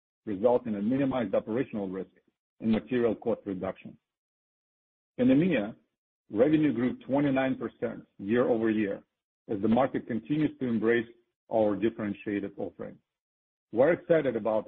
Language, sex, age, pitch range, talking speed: English, male, 50-69, 105-135 Hz, 125 wpm